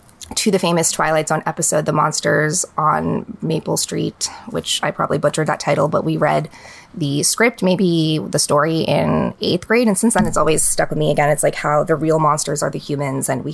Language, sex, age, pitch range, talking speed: English, female, 20-39, 150-180 Hz, 215 wpm